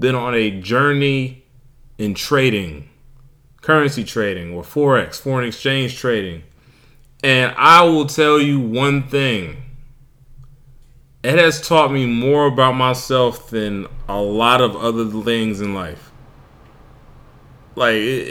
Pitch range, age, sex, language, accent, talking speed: 115-140 Hz, 20-39, male, English, American, 120 wpm